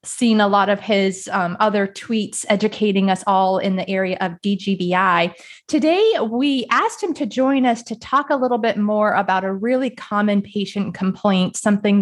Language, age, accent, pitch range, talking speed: English, 30-49, American, 195-255 Hz, 180 wpm